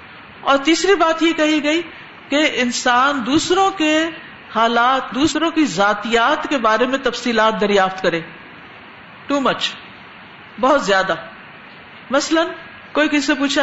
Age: 50-69